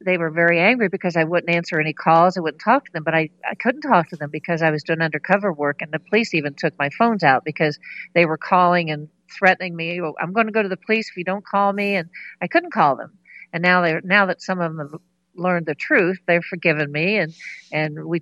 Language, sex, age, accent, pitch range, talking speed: English, female, 50-69, American, 155-190 Hz, 260 wpm